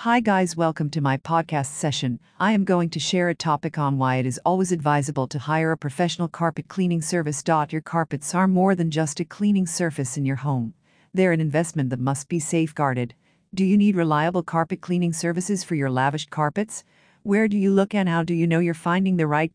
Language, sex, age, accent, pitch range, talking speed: English, female, 50-69, American, 155-185 Hz, 215 wpm